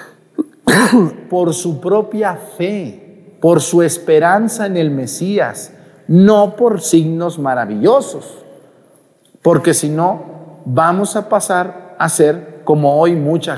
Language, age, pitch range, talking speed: Spanish, 40-59, 155-215 Hz, 115 wpm